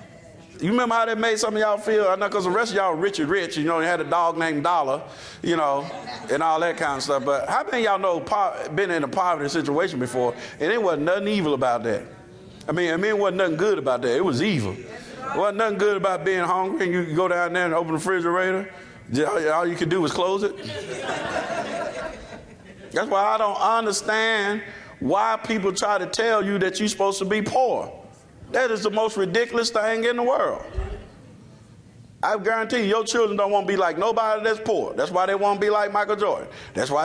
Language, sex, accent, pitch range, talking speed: English, male, American, 180-225 Hz, 225 wpm